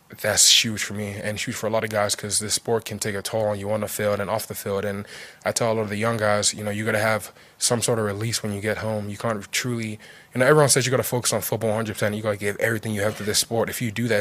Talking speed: 330 wpm